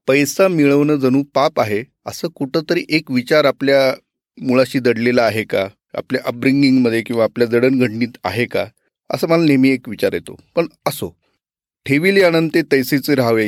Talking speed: 145 wpm